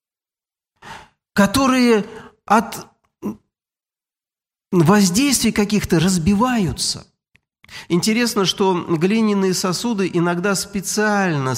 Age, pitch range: 50-69, 155-215 Hz